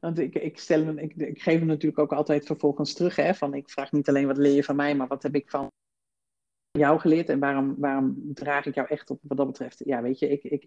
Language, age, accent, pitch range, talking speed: Dutch, 50-69, Dutch, 140-175 Hz, 270 wpm